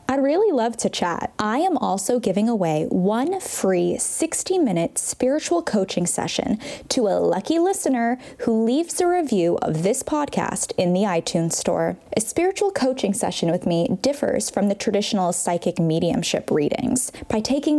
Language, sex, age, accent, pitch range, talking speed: English, female, 10-29, American, 190-270 Hz, 155 wpm